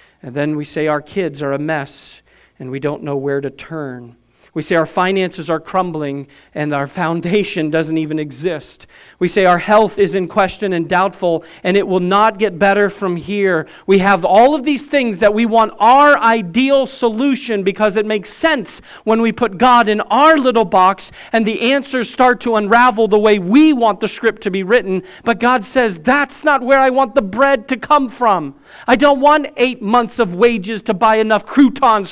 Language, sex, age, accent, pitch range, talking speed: English, male, 40-59, American, 160-225 Hz, 200 wpm